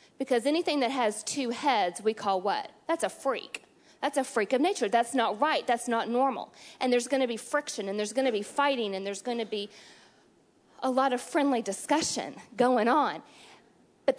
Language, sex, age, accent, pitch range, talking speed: English, female, 40-59, American, 205-270 Hz, 205 wpm